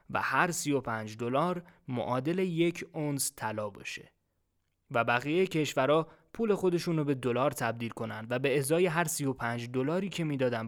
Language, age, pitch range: Persian, 20-39, 125-160 Hz